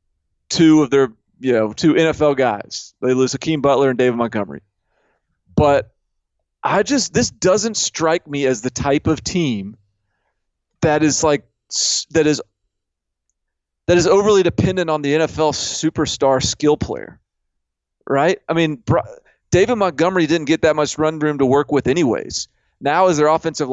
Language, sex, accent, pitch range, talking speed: English, male, American, 120-150 Hz, 155 wpm